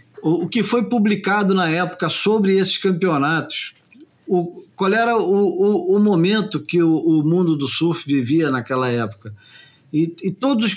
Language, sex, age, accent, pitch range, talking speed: Portuguese, male, 50-69, Brazilian, 150-200 Hz, 150 wpm